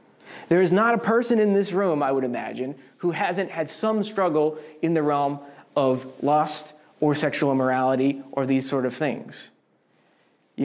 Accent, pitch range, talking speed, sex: American, 145-200 Hz, 170 wpm, male